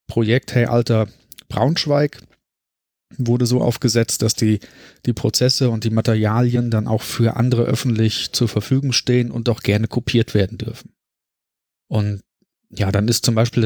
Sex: male